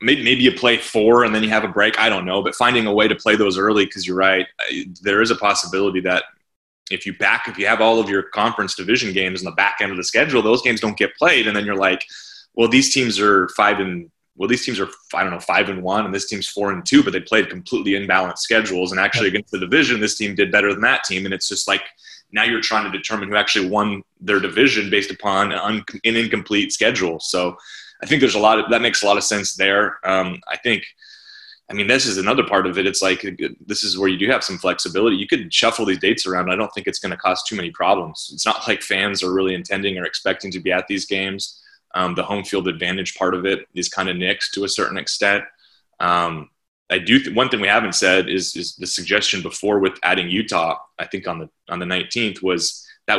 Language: English